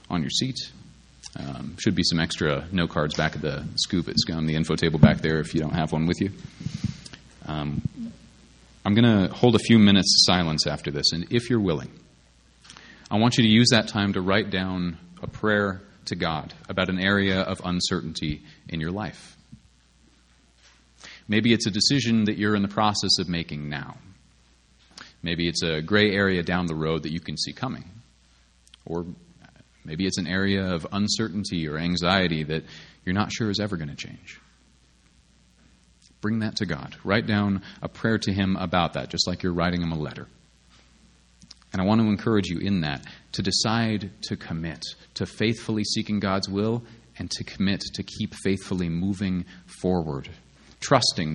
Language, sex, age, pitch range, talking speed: English, male, 30-49, 80-105 Hz, 180 wpm